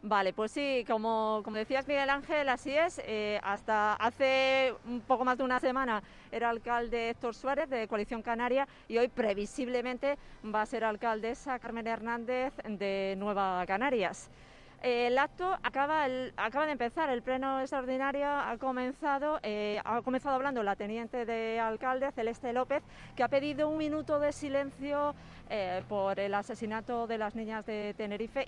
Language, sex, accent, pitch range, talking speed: Spanish, female, Spanish, 215-260 Hz, 160 wpm